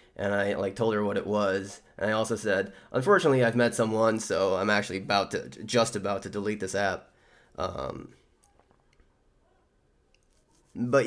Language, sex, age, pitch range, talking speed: English, male, 10-29, 95-145 Hz, 155 wpm